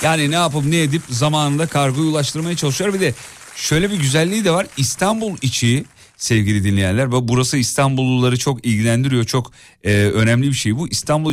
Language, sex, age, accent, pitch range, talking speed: Turkish, male, 40-59, native, 115-150 Hz, 160 wpm